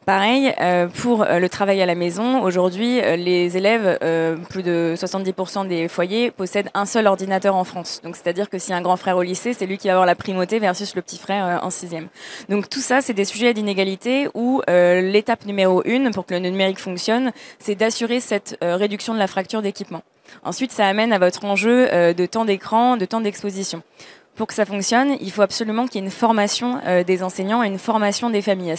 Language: French